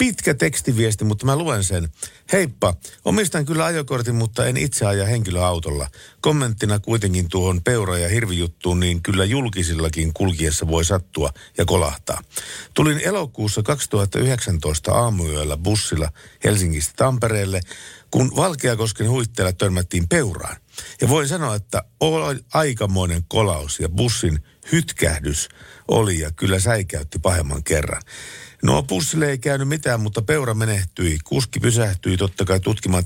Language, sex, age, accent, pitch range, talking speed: Finnish, male, 50-69, native, 85-115 Hz, 125 wpm